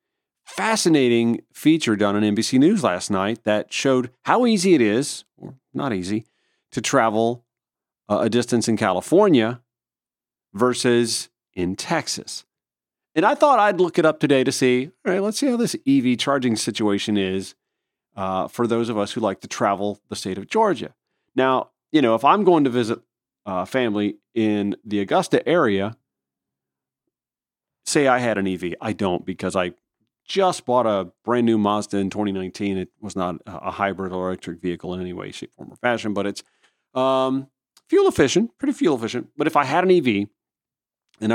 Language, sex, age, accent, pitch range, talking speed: English, male, 40-59, American, 100-130 Hz, 175 wpm